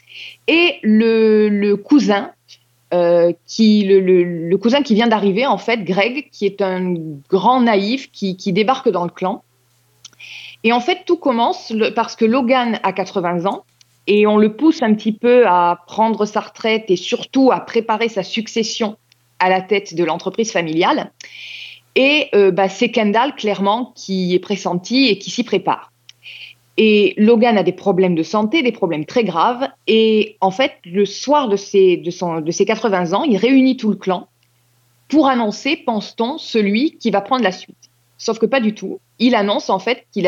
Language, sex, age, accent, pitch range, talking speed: French, female, 20-39, French, 185-235 Hz, 180 wpm